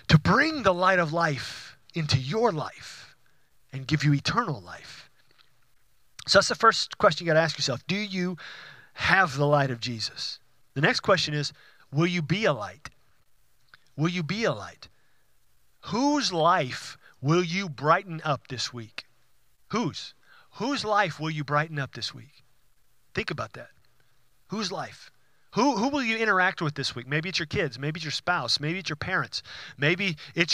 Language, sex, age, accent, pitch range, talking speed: English, male, 40-59, American, 130-175 Hz, 175 wpm